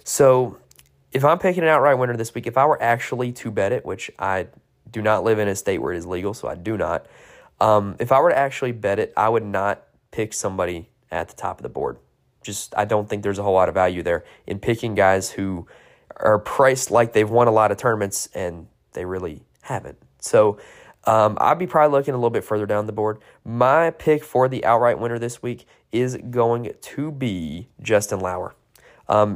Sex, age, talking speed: male, 20-39, 220 wpm